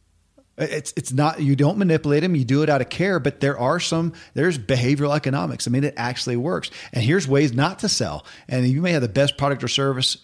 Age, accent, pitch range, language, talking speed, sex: 40-59, American, 120-145 Hz, English, 235 wpm, male